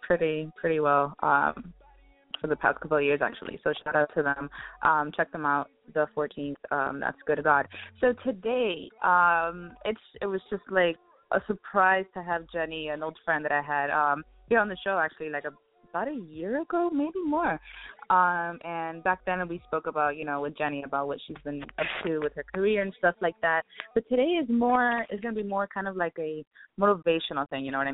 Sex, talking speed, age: female, 220 wpm, 20-39